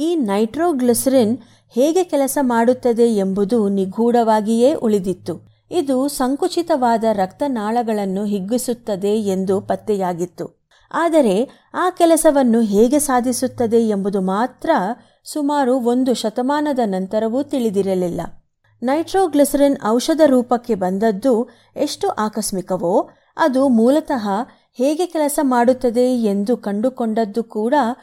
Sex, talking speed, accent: female, 85 wpm, native